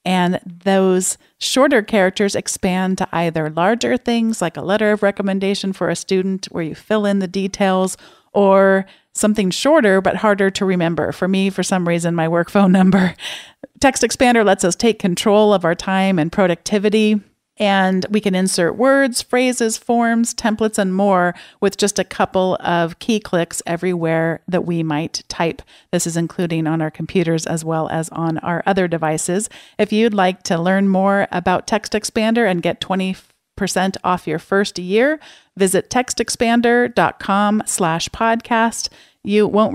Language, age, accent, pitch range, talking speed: English, 40-59, American, 170-215 Hz, 160 wpm